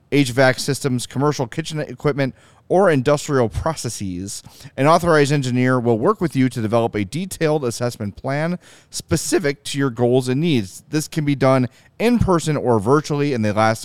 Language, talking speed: English, 165 wpm